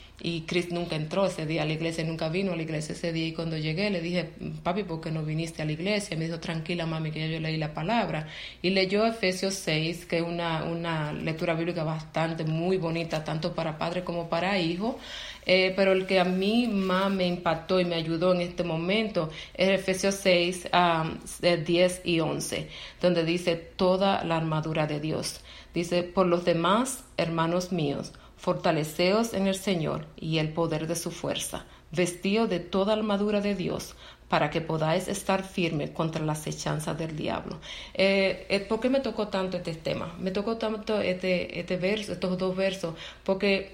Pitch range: 165-195 Hz